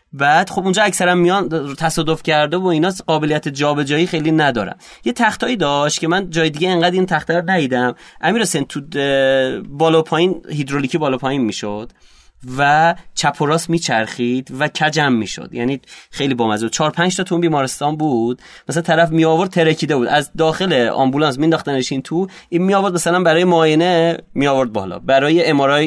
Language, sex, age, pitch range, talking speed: Persian, male, 30-49, 115-160 Hz, 170 wpm